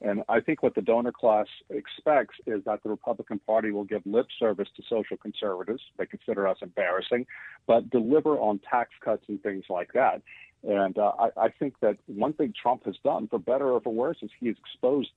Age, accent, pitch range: 50-69, American, 100-115 Hz